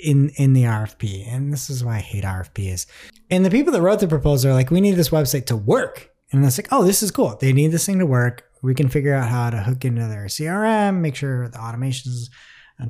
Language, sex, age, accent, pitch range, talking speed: English, male, 30-49, American, 130-185 Hz, 250 wpm